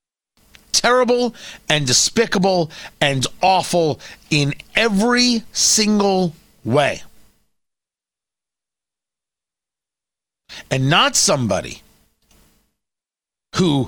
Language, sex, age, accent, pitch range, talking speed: English, male, 40-59, American, 155-225 Hz, 55 wpm